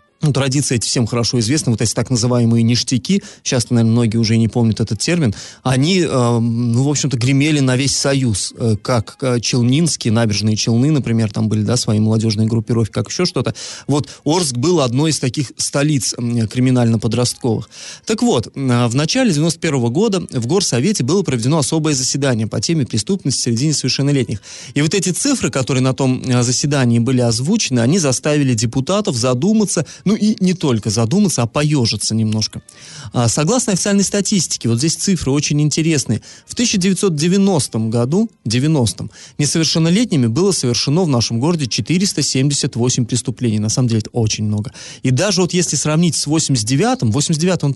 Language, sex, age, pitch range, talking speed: Russian, male, 30-49, 120-160 Hz, 155 wpm